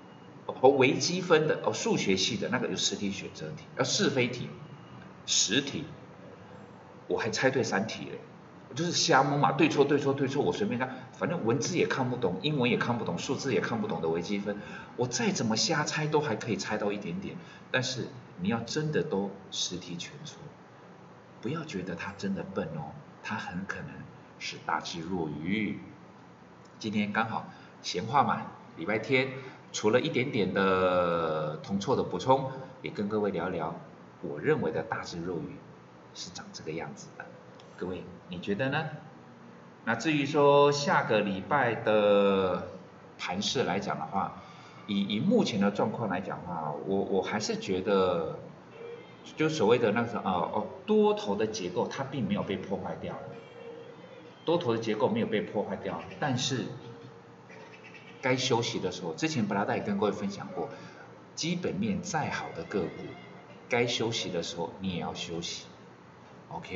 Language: Chinese